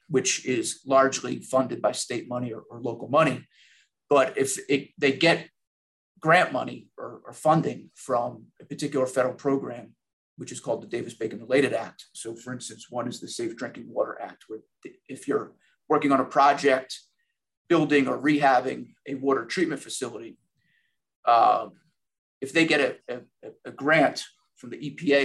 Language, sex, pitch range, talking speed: English, male, 130-160 Hz, 160 wpm